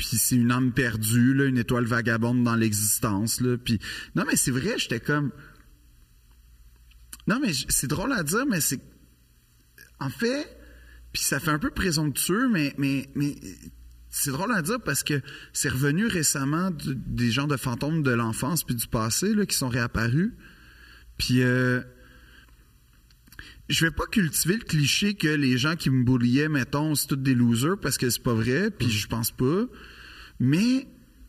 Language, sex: French, male